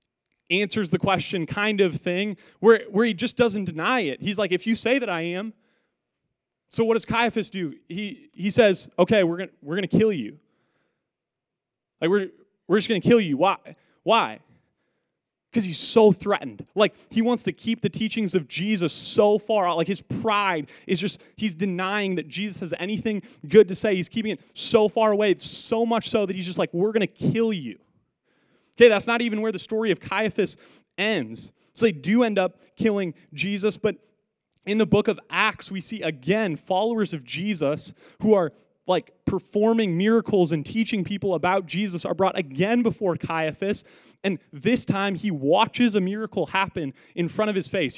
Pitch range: 180-220 Hz